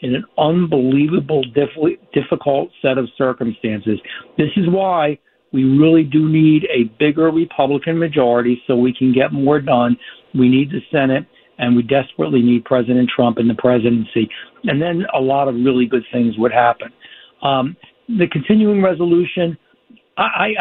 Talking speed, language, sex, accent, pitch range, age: 150 wpm, English, male, American, 135-165 Hz, 60-79